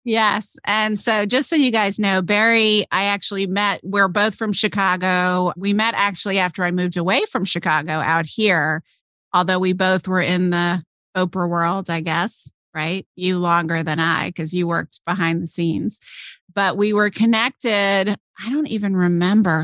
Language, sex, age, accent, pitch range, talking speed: English, female, 30-49, American, 175-200 Hz, 170 wpm